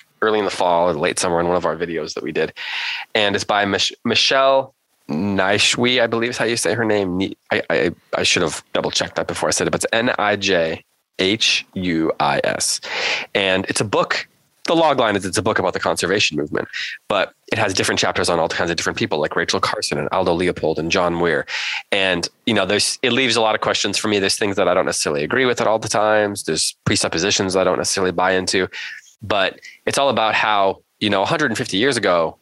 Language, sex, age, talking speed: English, male, 20-39, 220 wpm